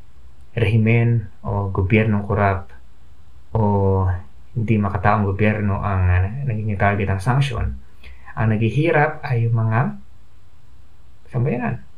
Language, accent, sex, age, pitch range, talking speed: English, Filipino, male, 20-39, 95-130 Hz, 95 wpm